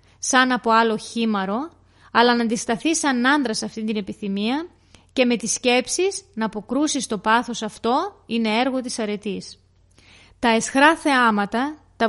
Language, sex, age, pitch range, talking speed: Greek, female, 30-49, 205-260 Hz, 150 wpm